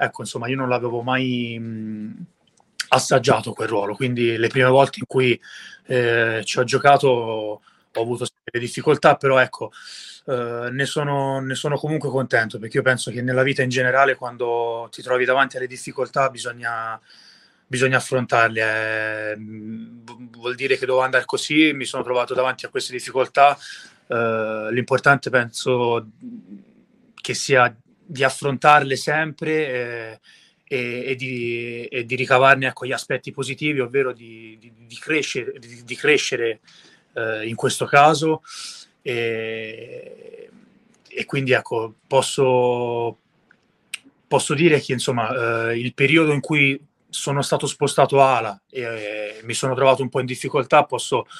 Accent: Italian